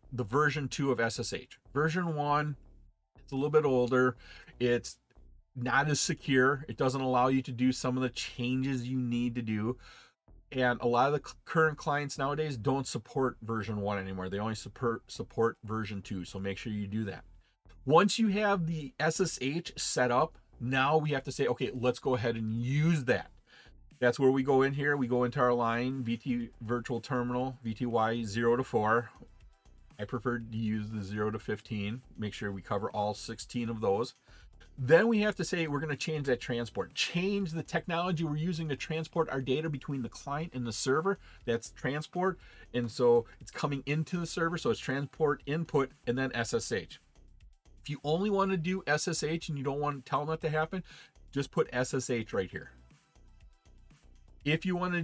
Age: 40-59